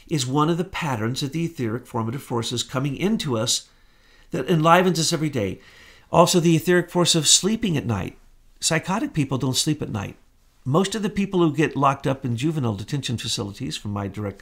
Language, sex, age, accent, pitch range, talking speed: English, male, 50-69, American, 120-170 Hz, 195 wpm